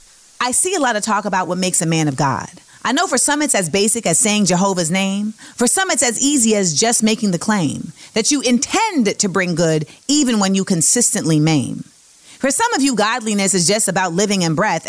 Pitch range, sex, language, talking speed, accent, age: 185-270 Hz, female, English, 225 wpm, American, 30-49